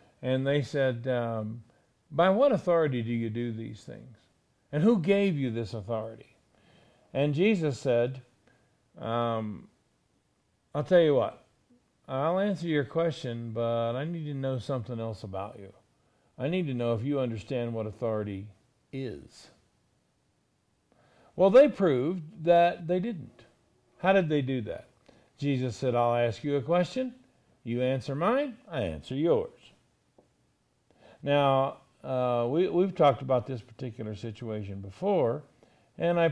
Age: 50-69